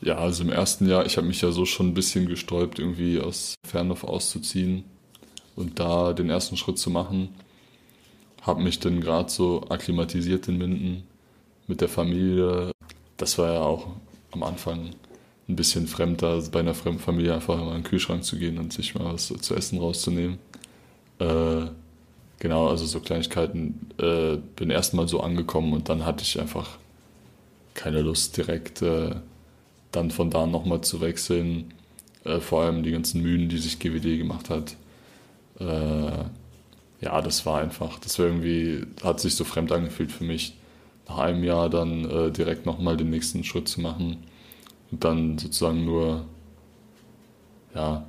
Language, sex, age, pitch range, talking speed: German, male, 20-39, 80-90 Hz, 165 wpm